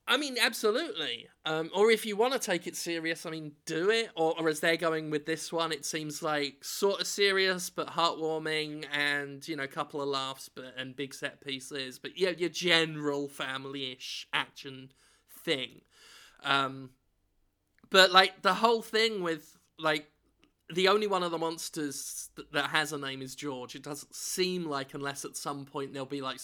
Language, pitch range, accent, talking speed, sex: English, 145-175 Hz, British, 185 wpm, male